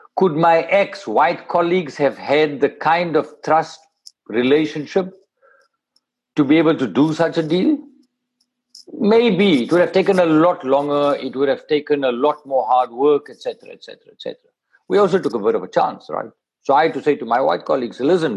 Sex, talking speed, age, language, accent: male, 190 wpm, 50-69, English, Indian